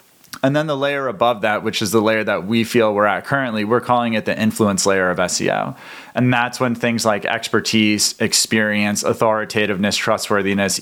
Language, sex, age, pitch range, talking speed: English, male, 30-49, 105-125 Hz, 185 wpm